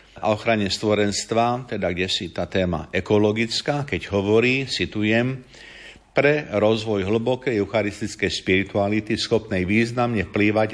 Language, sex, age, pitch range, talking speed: Slovak, male, 50-69, 95-115 Hz, 110 wpm